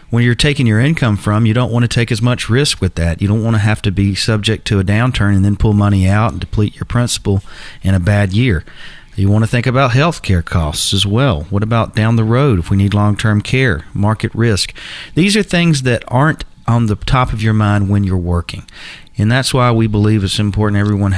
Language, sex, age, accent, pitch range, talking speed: English, male, 40-59, American, 95-115 Hz, 235 wpm